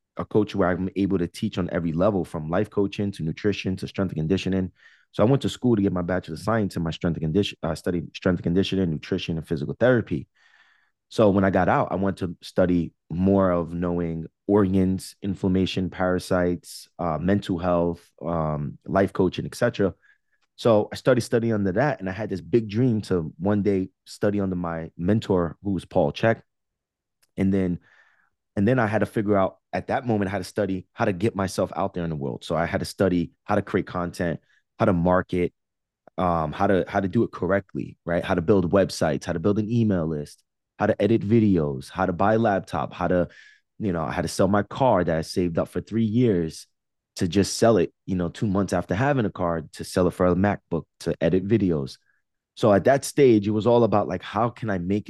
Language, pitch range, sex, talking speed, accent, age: English, 85-105 Hz, male, 220 wpm, American, 20-39